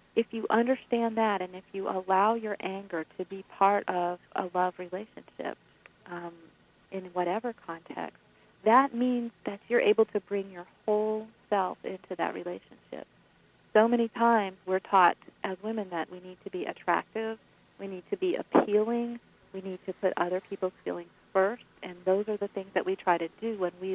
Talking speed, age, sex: 180 wpm, 40-59, female